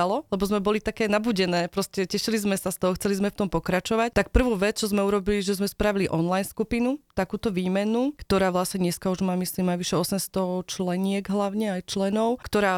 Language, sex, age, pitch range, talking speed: Slovak, female, 30-49, 185-215 Hz, 195 wpm